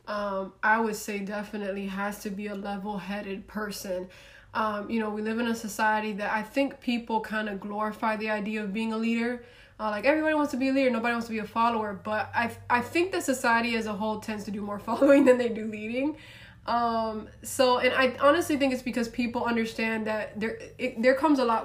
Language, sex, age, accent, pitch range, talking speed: English, female, 20-39, American, 215-240 Hz, 225 wpm